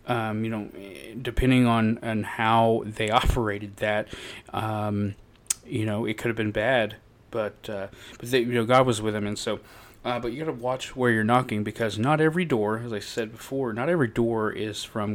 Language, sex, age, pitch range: English, male, 30-49, 105-120 Hz